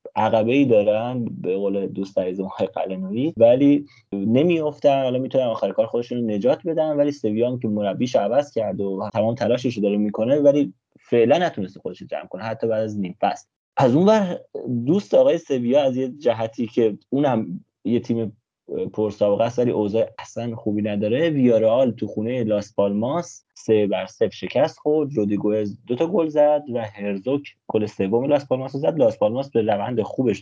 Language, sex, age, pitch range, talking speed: Persian, male, 30-49, 105-140 Hz, 165 wpm